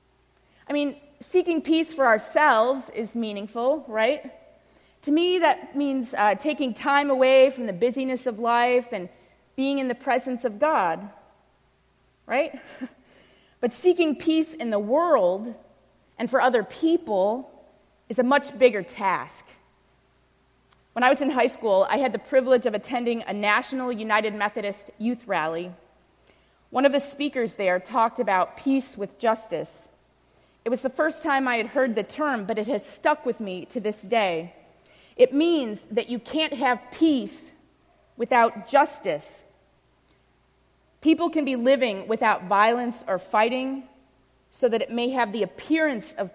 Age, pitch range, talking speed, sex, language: 30-49, 220-280 Hz, 150 wpm, female, English